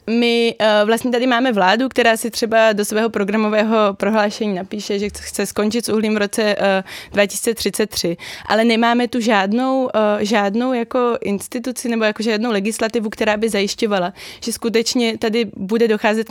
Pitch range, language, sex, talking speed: 200-220 Hz, Czech, female, 145 wpm